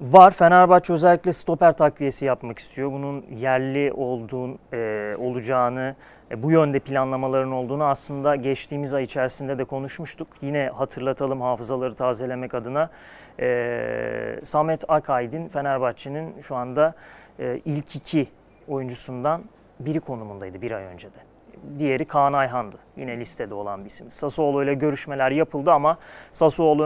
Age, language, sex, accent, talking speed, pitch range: 30-49, Turkish, male, native, 125 wpm, 125-155 Hz